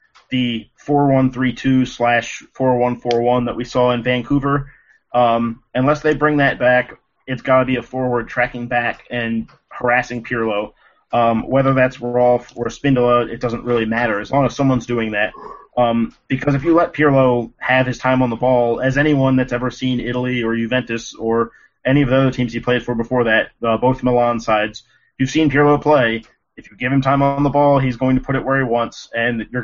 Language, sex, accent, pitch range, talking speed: English, male, American, 120-135 Hz, 200 wpm